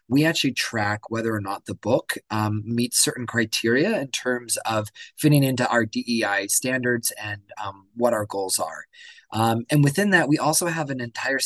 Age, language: 20-39, English